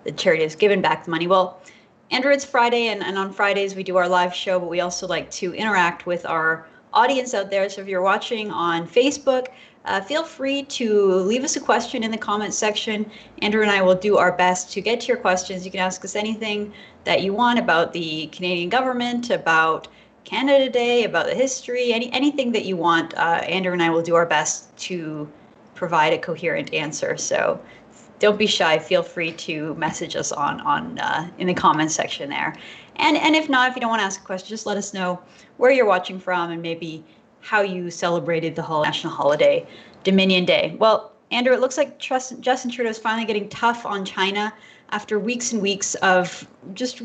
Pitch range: 175-230 Hz